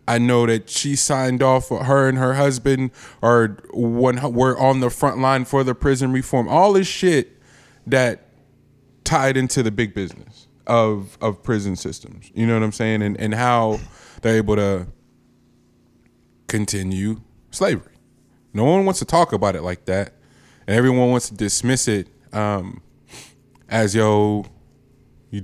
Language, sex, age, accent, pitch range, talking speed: English, male, 20-39, American, 105-130 Hz, 155 wpm